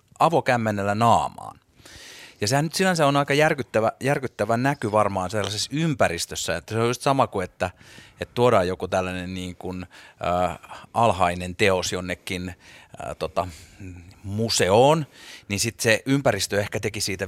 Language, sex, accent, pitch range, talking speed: Finnish, male, native, 90-130 Hz, 140 wpm